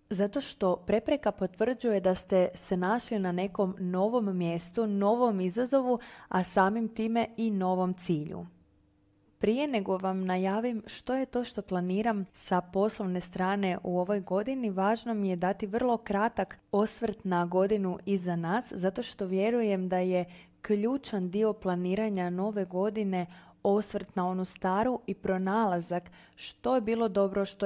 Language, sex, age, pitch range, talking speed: Croatian, female, 20-39, 185-220 Hz, 145 wpm